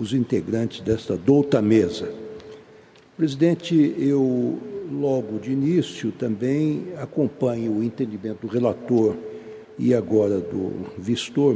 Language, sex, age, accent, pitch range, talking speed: Portuguese, male, 60-79, Brazilian, 120-155 Hz, 105 wpm